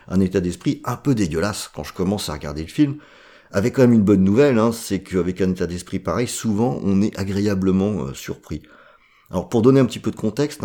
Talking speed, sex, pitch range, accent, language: 225 wpm, male, 90-115 Hz, French, French